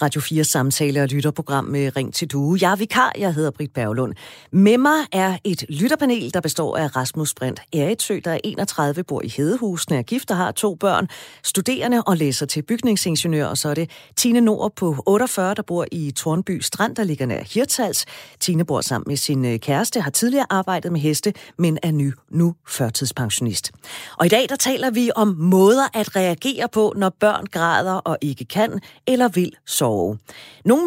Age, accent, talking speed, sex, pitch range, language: 30-49, native, 190 wpm, female, 140-205 Hz, Danish